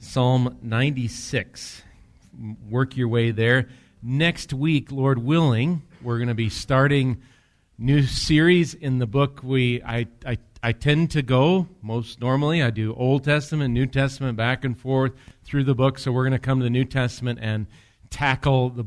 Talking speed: 165 wpm